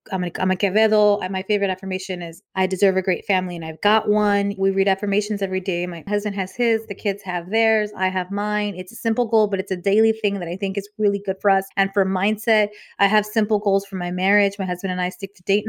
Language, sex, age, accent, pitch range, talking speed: English, female, 20-39, American, 190-215 Hz, 265 wpm